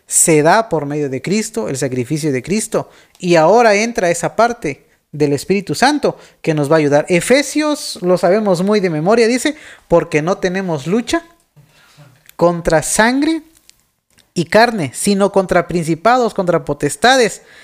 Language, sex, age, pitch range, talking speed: Spanish, male, 40-59, 160-225 Hz, 145 wpm